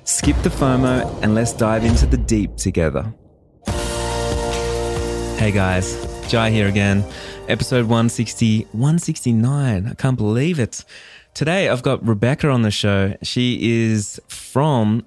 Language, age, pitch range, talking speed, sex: English, 20-39, 100-115 Hz, 125 wpm, male